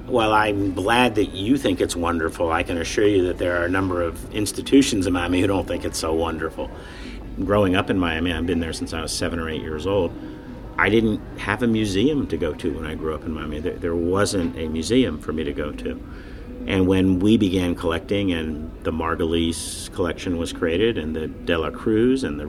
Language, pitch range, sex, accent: English, 80-100 Hz, male, American